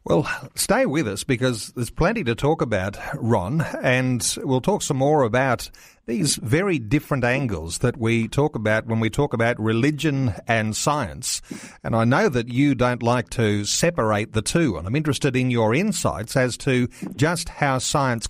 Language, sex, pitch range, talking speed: English, male, 115-145 Hz, 175 wpm